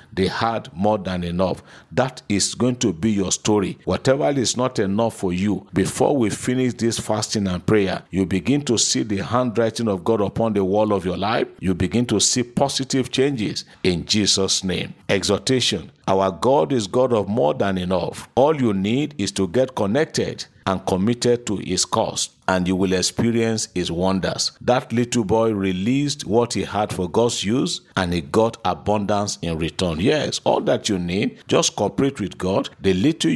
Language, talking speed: English, 185 wpm